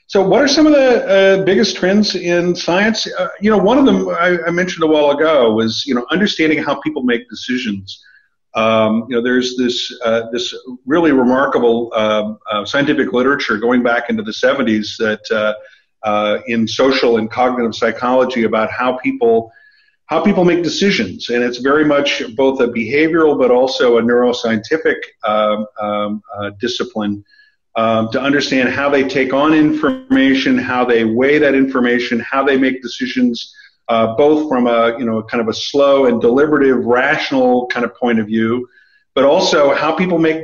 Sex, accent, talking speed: male, American, 175 wpm